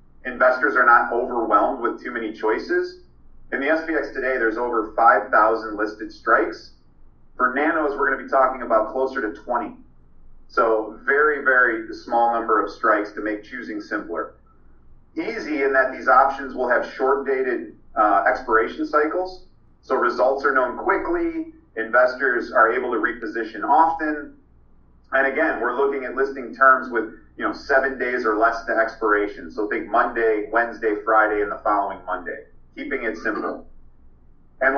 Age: 40-59